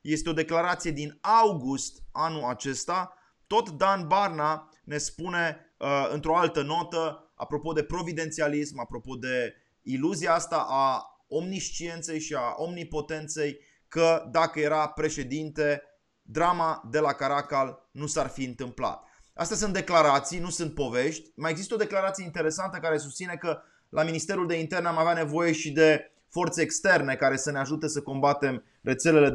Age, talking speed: 20-39, 145 wpm